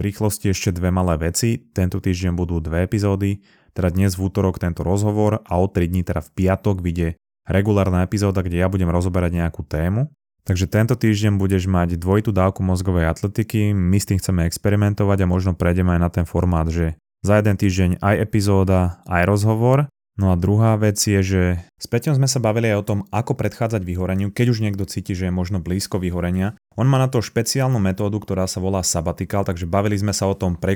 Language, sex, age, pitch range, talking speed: Slovak, male, 20-39, 90-105 Hz, 205 wpm